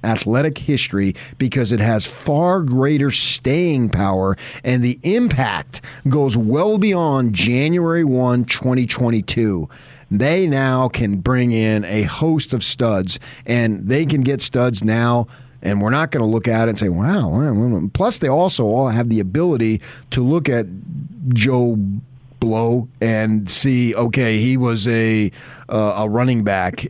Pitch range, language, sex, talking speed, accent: 105-135 Hz, English, male, 145 wpm, American